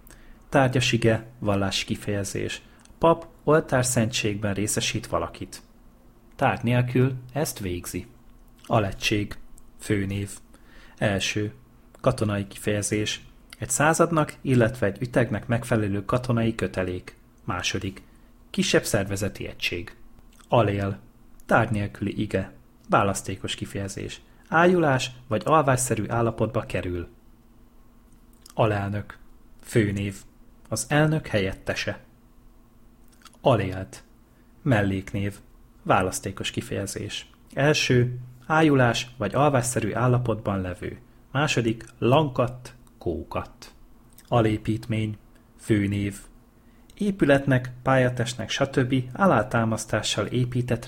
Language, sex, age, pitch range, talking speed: Hungarian, male, 30-49, 105-120 Hz, 75 wpm